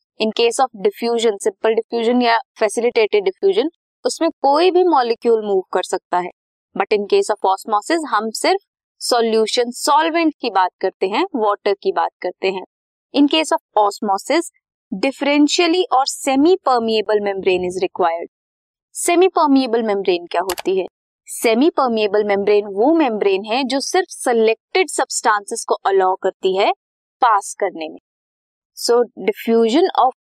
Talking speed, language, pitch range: 125 wpm, Hindi, 205-320 Hz